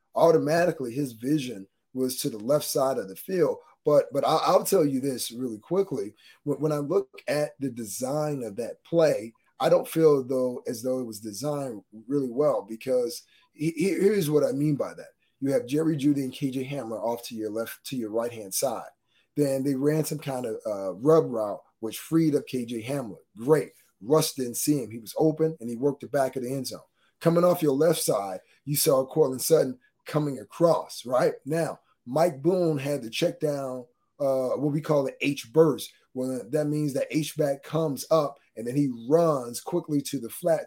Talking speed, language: 200 wpm, English